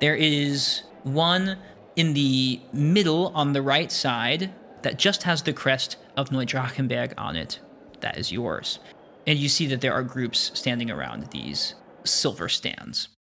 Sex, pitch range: male, 130-160 Hz